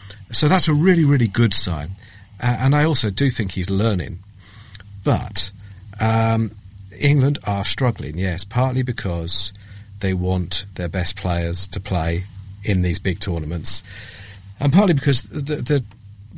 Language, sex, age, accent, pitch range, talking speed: English, male, 40-59, British, 95-120 Hz, 145 wpm